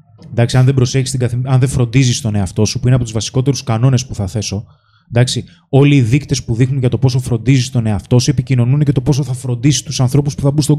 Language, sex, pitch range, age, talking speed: Greek, male, 115-150 Hz, 20-39, 250 wpm